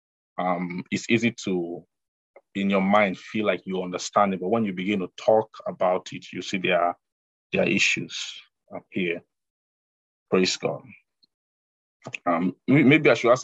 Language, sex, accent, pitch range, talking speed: English, male, Nigerian, 90-110 Hz, 155 wpm